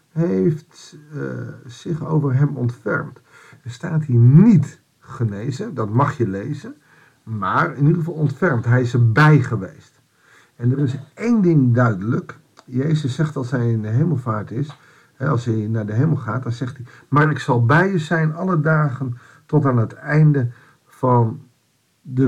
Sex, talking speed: male, 165 wpm